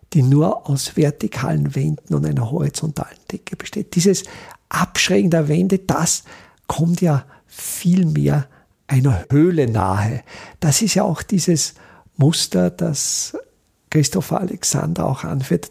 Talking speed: 120 wpm